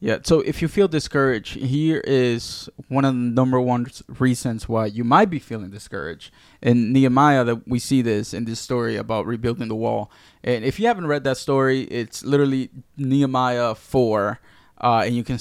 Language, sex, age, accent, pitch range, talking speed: English, male, 20-39, American, 115-135 Hz, 185 wpm